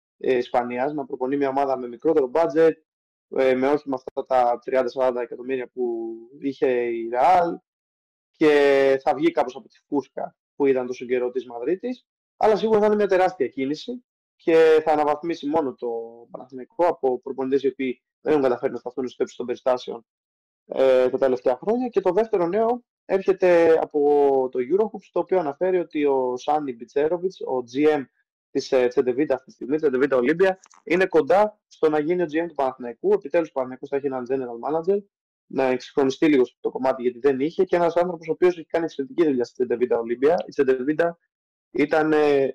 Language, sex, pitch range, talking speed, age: Greek, male, 130-170 Hz, 175 wpm, 20-39